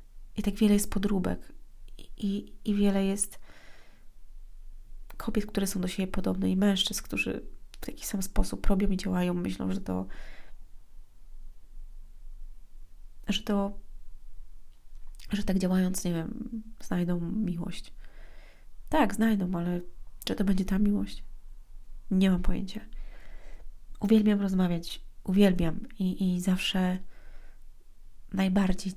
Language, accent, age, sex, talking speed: Polish, native, 30-49, female, 115 wpm